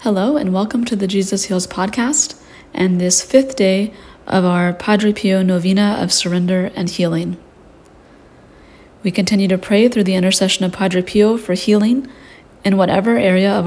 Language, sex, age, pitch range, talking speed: English, female, 30-49, 180-210 Hz, 160 wpm